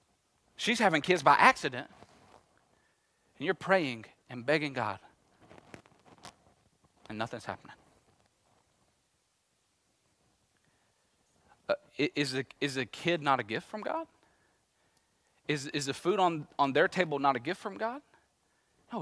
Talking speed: 120 wpm